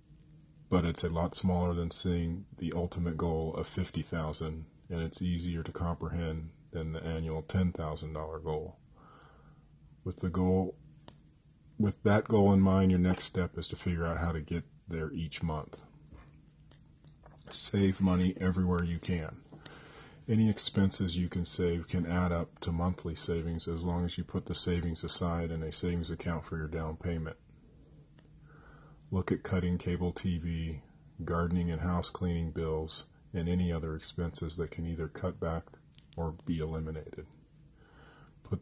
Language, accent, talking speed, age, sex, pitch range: English, American, 150 wpm, 40-59, male, 80-95 Hz